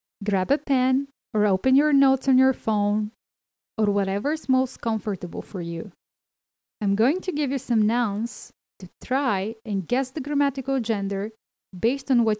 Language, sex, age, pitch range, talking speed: Bulgarian, female, 20-39, 200-255 Hz, 165 wpm